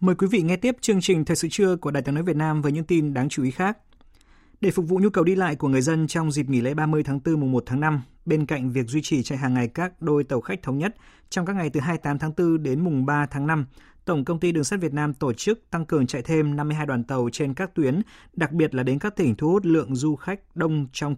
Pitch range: 130-170 Hz